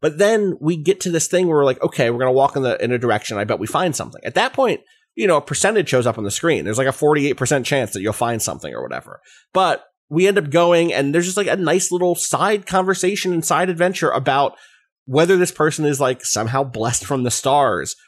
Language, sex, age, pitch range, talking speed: English, male, 30-49, 105-150 Hz, 250 wpm